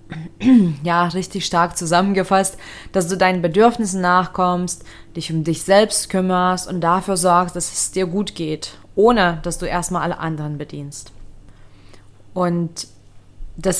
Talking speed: 135 wpm